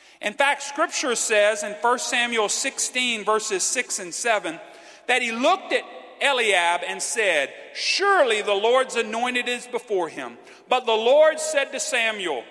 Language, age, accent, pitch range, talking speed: English, 40-59, American, 210-285 Hz, 155 wpm